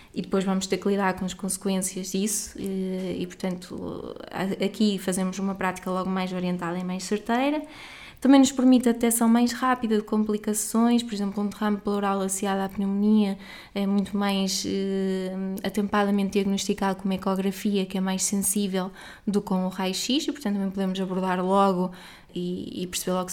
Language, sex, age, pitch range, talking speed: Portuguese, female, 20-39, 195-225 Hz, 175 wpm